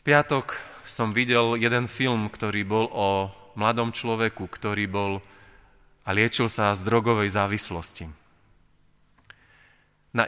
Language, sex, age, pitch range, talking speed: Slovak, male, 30-49, 105-135 Hz, 115 wpm